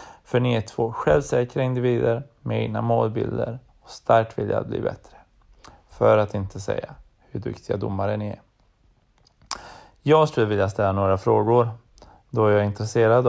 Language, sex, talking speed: Swedish, male, 155 wpm